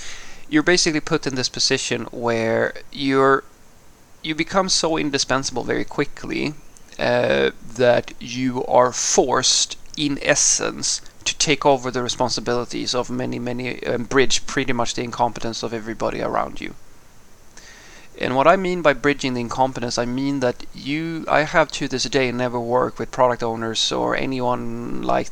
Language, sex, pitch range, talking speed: English, male, 120-145 Hz, 150 wpm